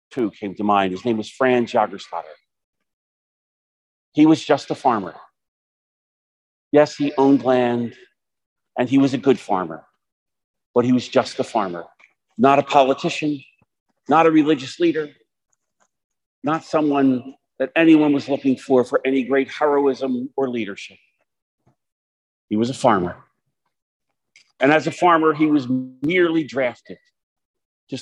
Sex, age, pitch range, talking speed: male, 50-69, 115-150 Hz, 135 wpm